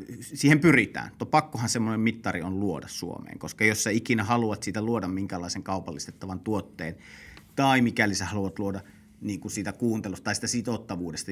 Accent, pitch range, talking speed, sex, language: native, 95-115 Hz, 165 wpm, male, Finnish